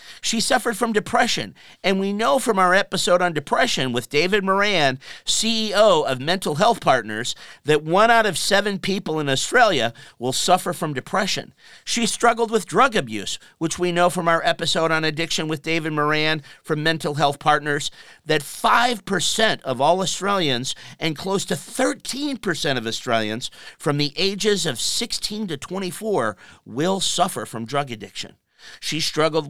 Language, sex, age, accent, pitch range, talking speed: English, male, 50-69, American, 140-205 Hz, 155 wpm